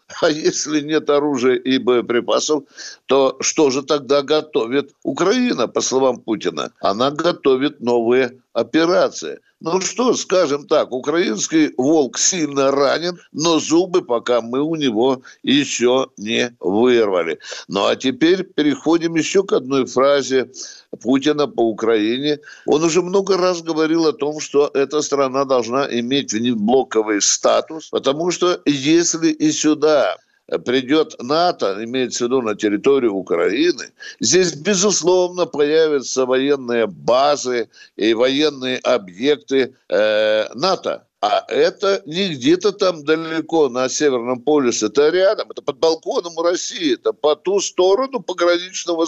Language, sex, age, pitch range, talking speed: Russian, male, 60-79, 135-195 Hz, 130 wpm